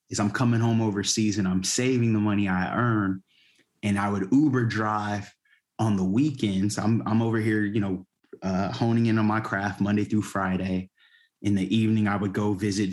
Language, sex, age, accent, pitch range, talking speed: English, male, 20-39, American, 100-110 Hz, 195 wpm